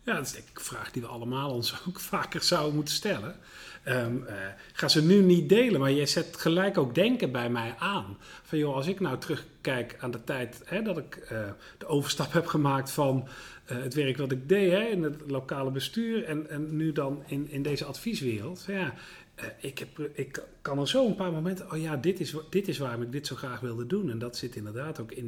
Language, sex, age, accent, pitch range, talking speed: Dutch, male, 40-59, Dutch, 130-170 Hz, 235 wpm